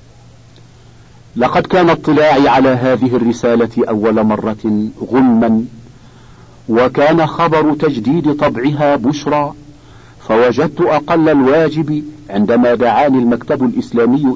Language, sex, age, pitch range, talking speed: Arabic, male, 50-69, 115-145 Hz, 90 wpm